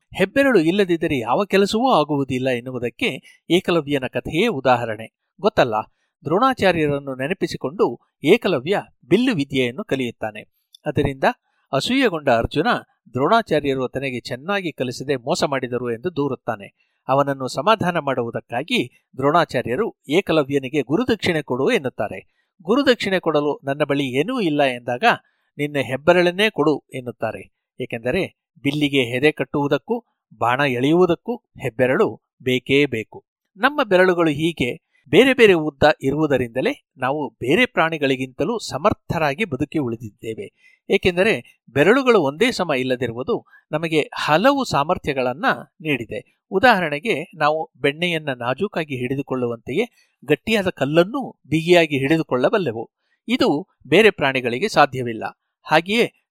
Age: 60-79